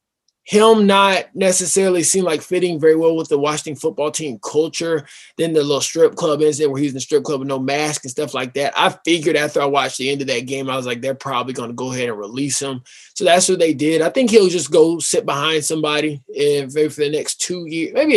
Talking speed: 250 wpm